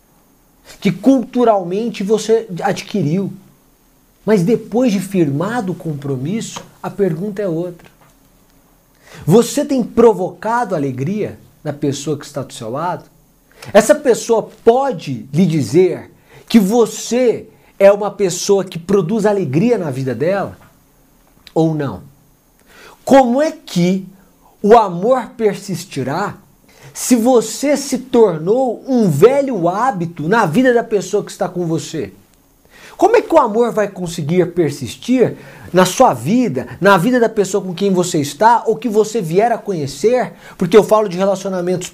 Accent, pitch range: Brazilian, 175-240 Hz